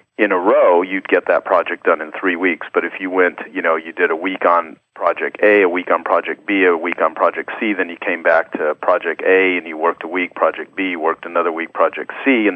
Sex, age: male, 40-59